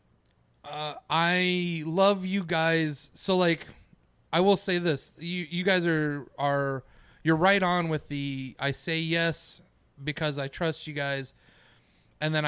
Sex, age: male, 30-49